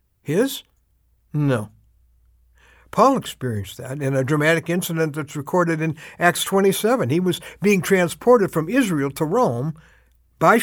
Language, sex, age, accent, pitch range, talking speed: English, male, 60-79, American, 125-205 Hz, 130 wpm